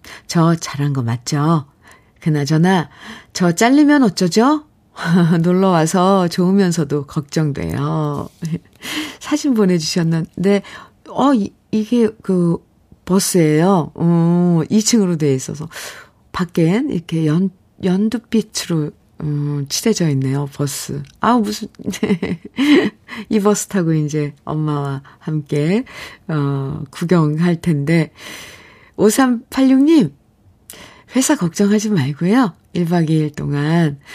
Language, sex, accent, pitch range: Korean, female, native, 150-210 Hz